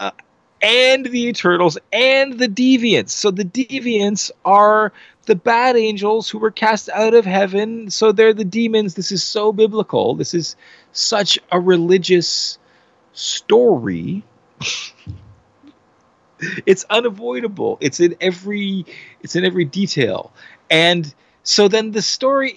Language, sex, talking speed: English, male, 130 wpm